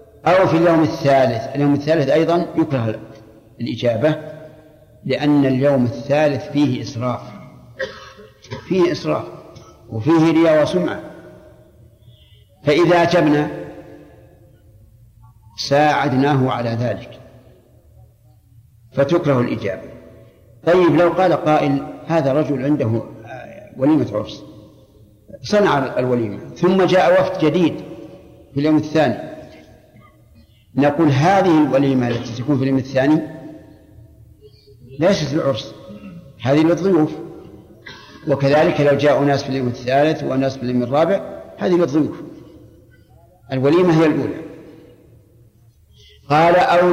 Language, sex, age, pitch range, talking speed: Arabic, male, 60-79, 115-155 Hz, 95 wpm